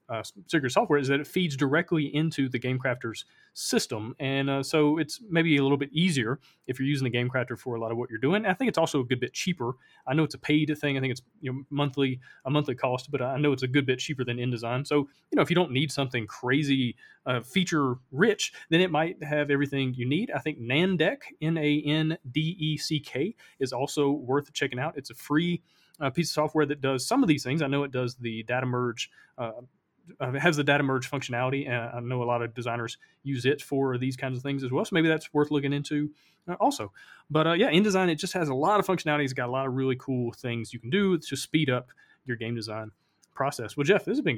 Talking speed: 255 wpm